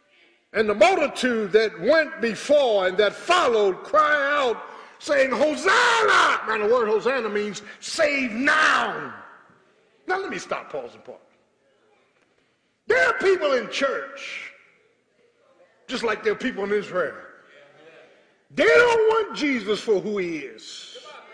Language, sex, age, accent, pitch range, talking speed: English, male, 50-69, American, 220-360 Hz, 130 wpm